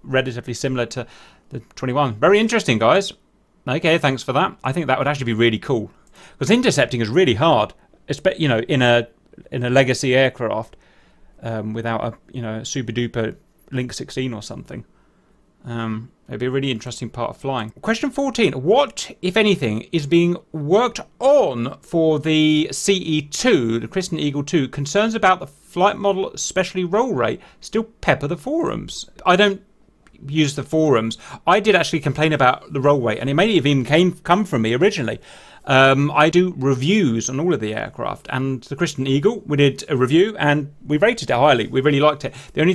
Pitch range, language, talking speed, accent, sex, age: 125-180 Hz, English, 180 wpm, British, male, 30-49